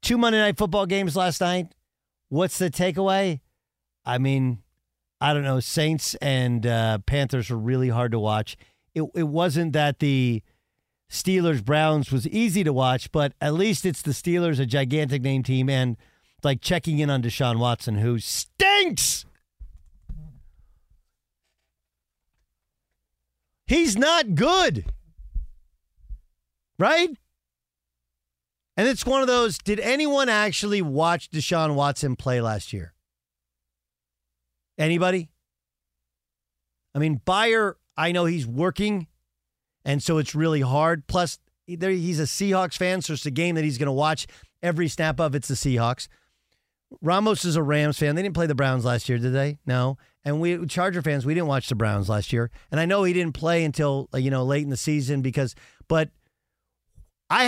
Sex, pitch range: male, 110-175 Hz